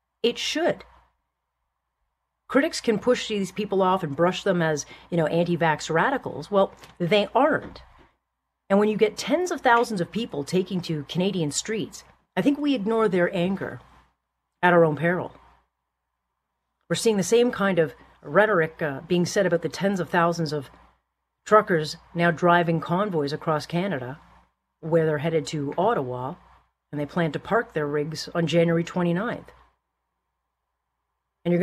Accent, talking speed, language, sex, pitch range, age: American, 155 wpm, English, female, 160-200 Hz, 40-59